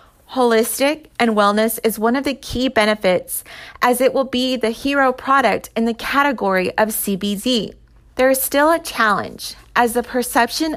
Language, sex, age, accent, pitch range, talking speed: English, female, 30-49, American, 210-265 Hz, 160 wpm